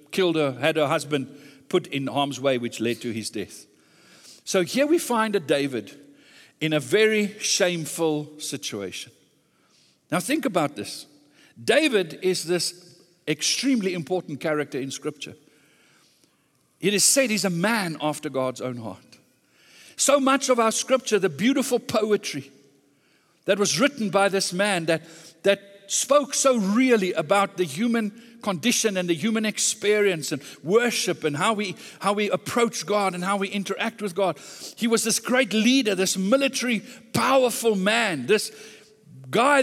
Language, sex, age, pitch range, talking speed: English, male, 60-79, 175-245 Hz, 150 wpm